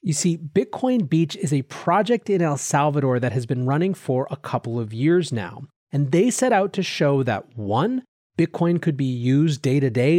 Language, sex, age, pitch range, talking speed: English, male, 30-49, 130-180 Hz, 195 wpm